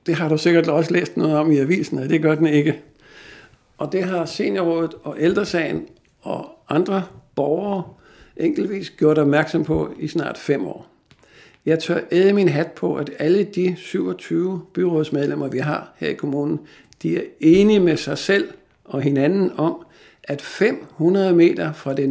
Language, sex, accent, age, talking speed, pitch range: Danish, male, native, 60-79, 170 wpm, 145-180 Hz